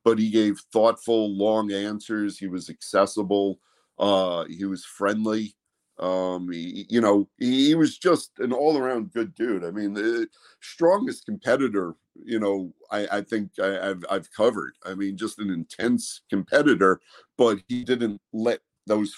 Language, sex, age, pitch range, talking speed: English, male, 50-69, 95-115 Hz, 145 wpm